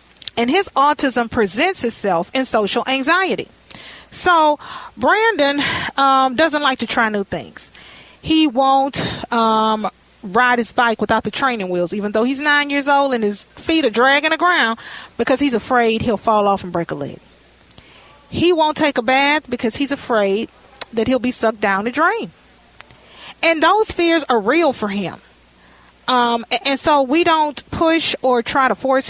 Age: 40-59